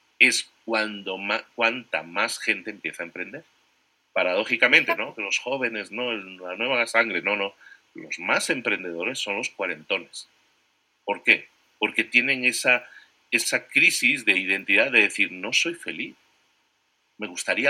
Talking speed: 135 wpm